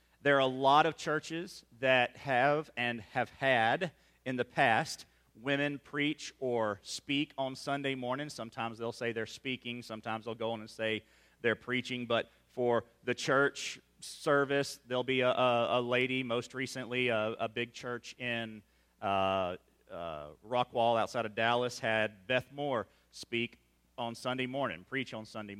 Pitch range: 110-135 Hz